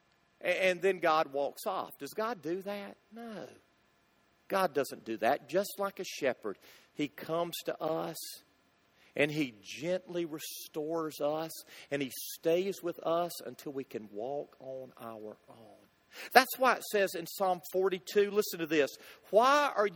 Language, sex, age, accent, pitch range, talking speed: English, male, 50-69, American, 165-225 Hz, 155 wpm